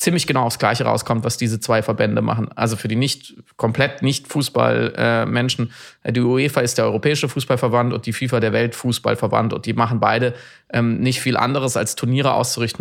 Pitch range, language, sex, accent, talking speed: 120-140 Hz, German, male, German, 185 wpm